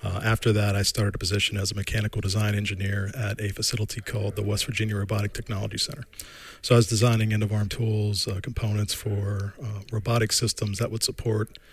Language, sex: English, male